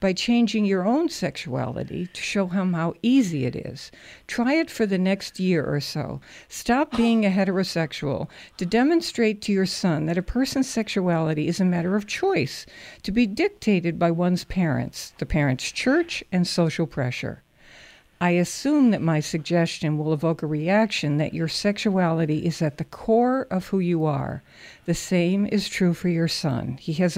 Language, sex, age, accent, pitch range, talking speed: English, female, 60-79, American, 165-210 Hz, 175 wpm